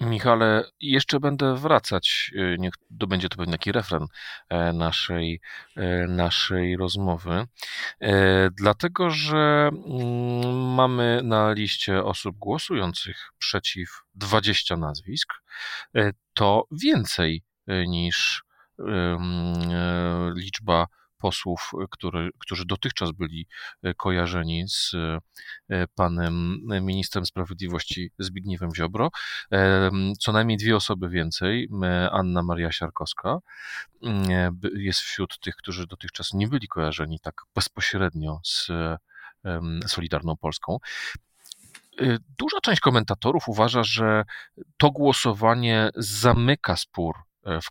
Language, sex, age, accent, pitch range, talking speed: Polish, male, 40-59, native, 85-110 Hz, 90 wpm